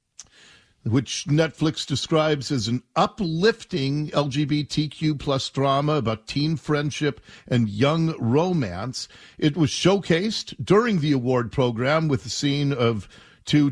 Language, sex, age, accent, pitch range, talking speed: English, male, 50-69, American, 115-160 Hz, 120 wpm